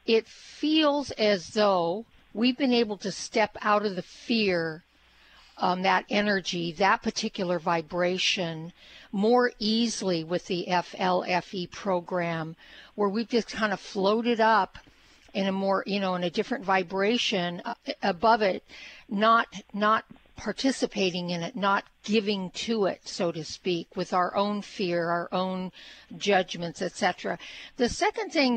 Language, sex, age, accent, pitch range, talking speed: English, female, 50-69, American, 185-230 Hz, 140 wpm